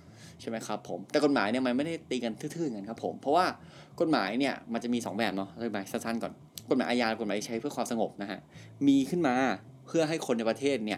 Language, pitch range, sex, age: Thai, 110-145 Hz, male, 20-39